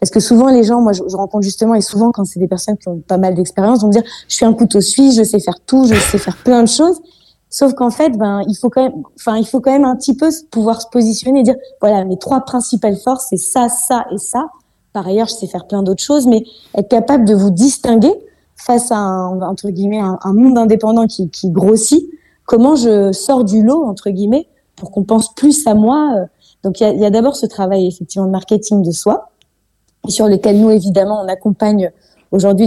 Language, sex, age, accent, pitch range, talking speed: French, female, 20-39, French, 190-245 Hz, 240 wpm